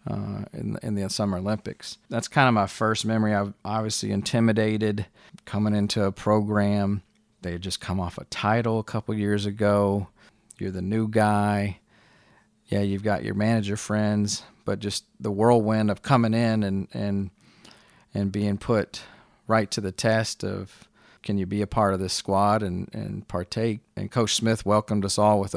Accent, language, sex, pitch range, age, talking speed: American, English, male, 100-110 Hz, 40-59, 180 wpm